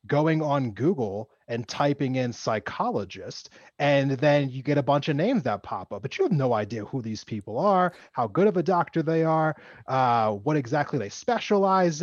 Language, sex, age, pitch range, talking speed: English, male, 30-49, 110-155 Hz, 195 wpm